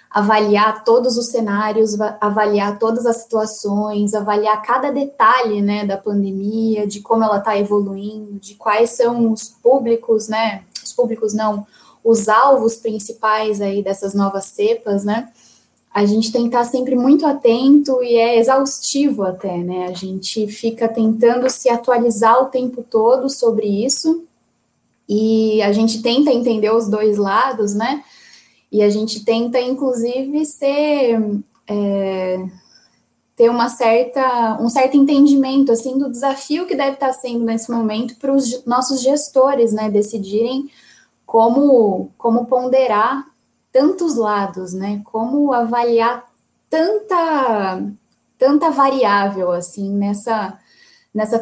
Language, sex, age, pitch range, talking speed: Portuguese, female, 10-29, 210-255 Hz, 130 wpm